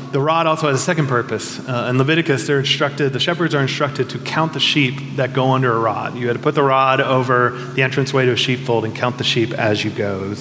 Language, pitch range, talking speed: English, 125-145 Hz, 265 wpm